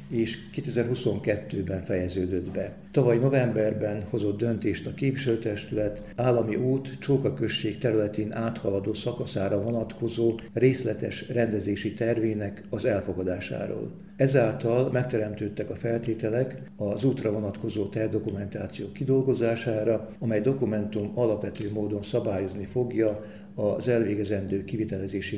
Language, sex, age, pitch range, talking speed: Hungarian, male, 50-69, 105-130 Hz, 95 wpm